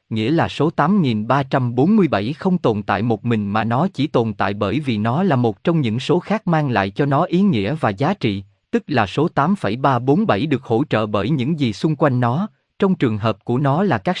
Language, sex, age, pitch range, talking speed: Vietnamese, male, 20-39, 115-165 Hz, 230 wpm